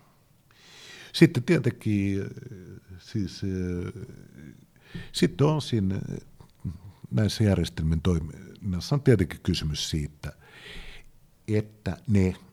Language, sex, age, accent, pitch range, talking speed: Finnish, male, 60-79, native, 75-115 Hz, 65 wpm